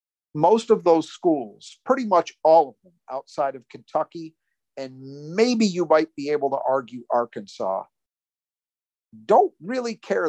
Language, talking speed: English, 140 wpm